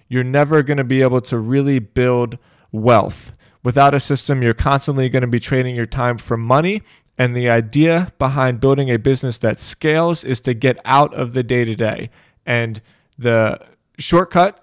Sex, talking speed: male, 170 wpm